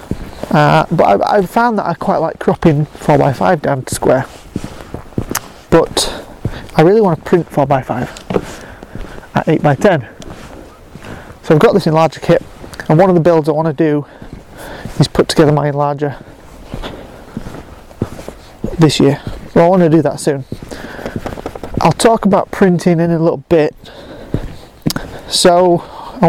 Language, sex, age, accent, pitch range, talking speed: English, male, 30-49, British, 145-170 Hz, 140 wpm